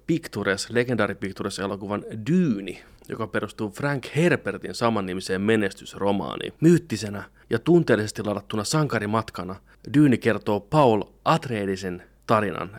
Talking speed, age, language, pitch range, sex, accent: 90 wpm, 30-49, Finnish, 100-120 Hz, male, native